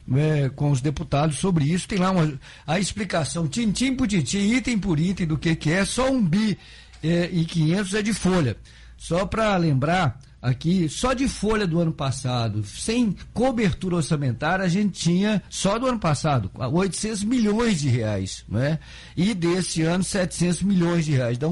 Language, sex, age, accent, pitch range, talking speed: Portuguese, male, 50-69, Brazilian, 140-195 Hz, 180 wpm